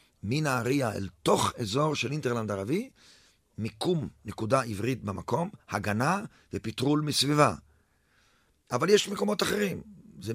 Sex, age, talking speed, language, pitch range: male, 50-69, 110 wpm, Hebrew, 100-140 Hz